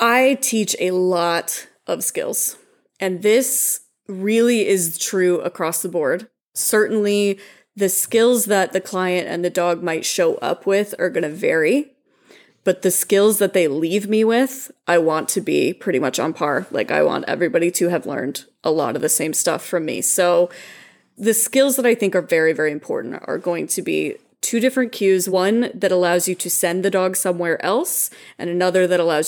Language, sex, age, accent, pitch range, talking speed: English, female, 20-39, American, 175-210 Hz, 190 wpm